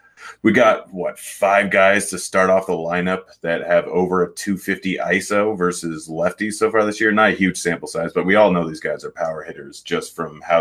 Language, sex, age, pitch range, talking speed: English, male, 30-49, 85-100 Hz, 220 wpm